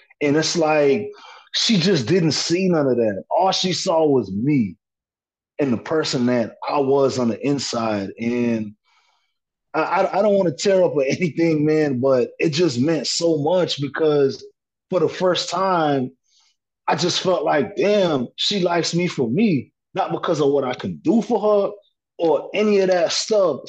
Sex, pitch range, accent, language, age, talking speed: male, 130-175 Hz, American, English, 30-49, 175 wpm